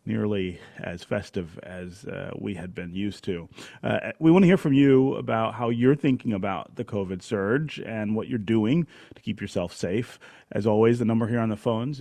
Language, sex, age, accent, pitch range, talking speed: English, male, 30-49, American, 105-135 Hz, 205 wpm